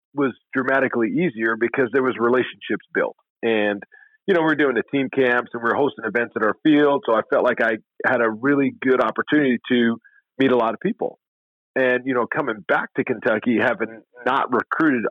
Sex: male